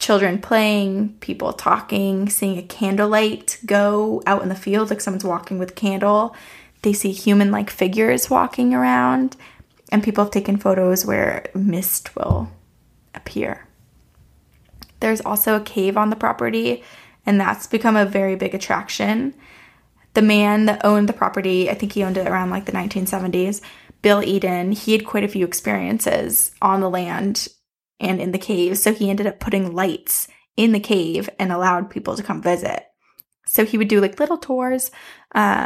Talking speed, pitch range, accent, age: 170 wpm, 190-215 Hz, American, 20-39